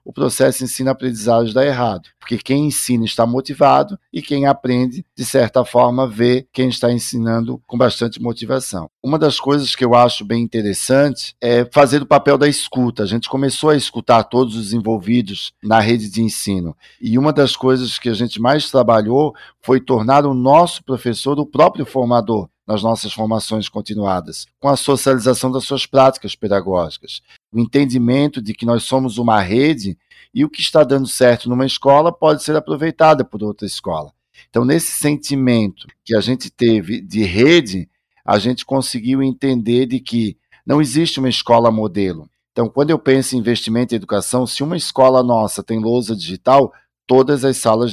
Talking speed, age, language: 170 wpm, 50-69, Portuguese